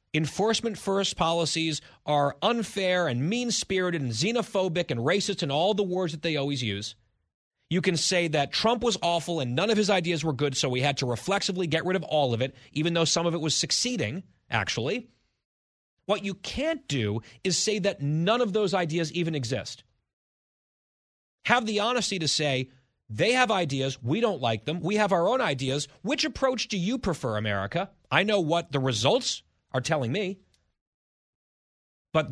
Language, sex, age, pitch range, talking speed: English, male, 30-49, 130-185 Hz, 180 wpm